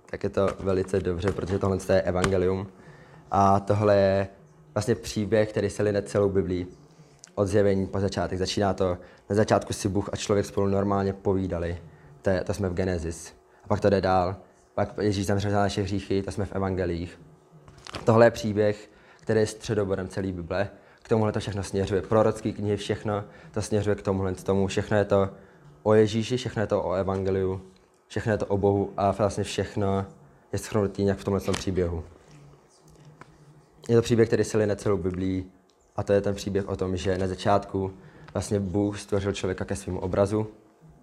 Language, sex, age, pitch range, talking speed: Czech, male, 20-39, 95-105 Hz, 185 wpm